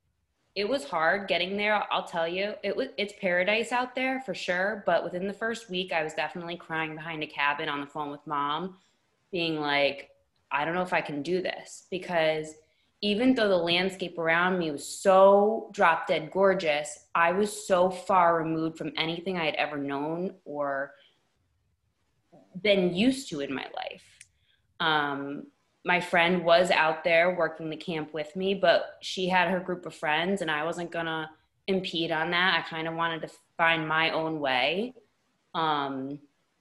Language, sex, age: English, female, 20-39